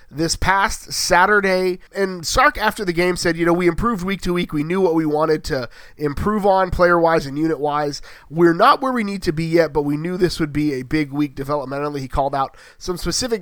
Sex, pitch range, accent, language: male, 145-175 Hz, American, English